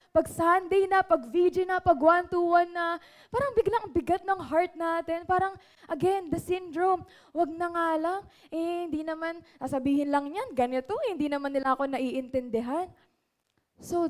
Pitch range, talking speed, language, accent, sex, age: 270-330 Hz, 150 wpm, Filipino, native, female, 20-39